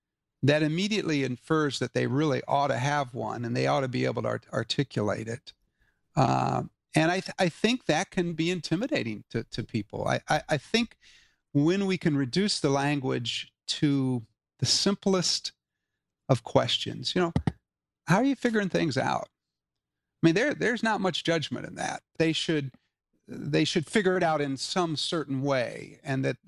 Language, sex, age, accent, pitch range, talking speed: English, male, 50-69, American, 120-160 Hz, 175 wpm